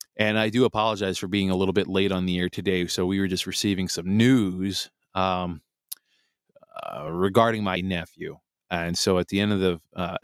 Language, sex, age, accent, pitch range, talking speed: English, male, 20-39, American, 90-105 Hz, 200 wpm